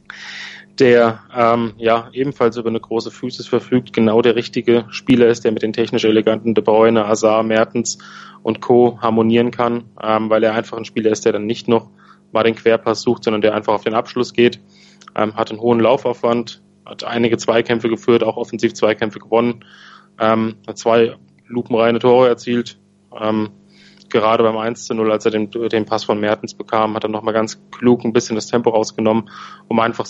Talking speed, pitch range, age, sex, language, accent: 185 wpm, 110-120 Hz, 20-39, male, German, German